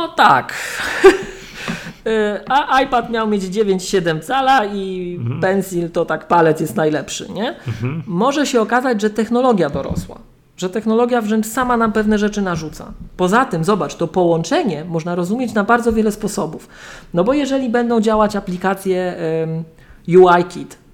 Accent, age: native, 40-59